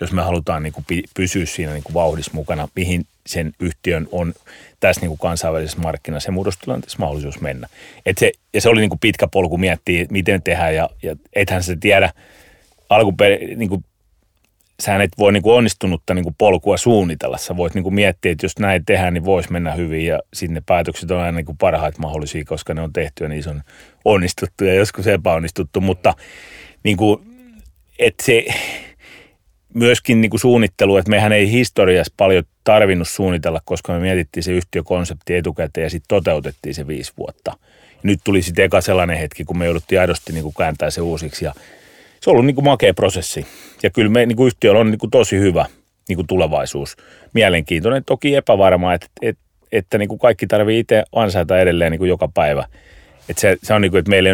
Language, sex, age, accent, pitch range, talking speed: Finnish, male, 30-49, native, 85-100 Hz, 175 wpm